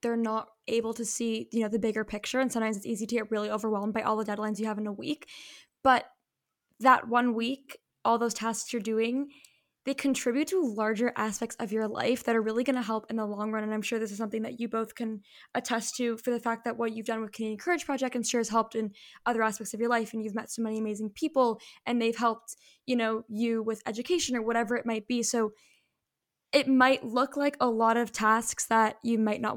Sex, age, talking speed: female, 10-29, 245 wpm